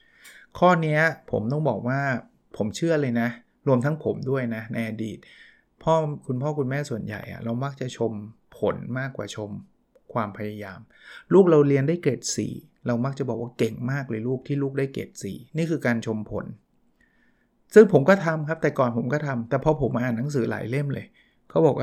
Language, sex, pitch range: Thai, male, 120-155 Hz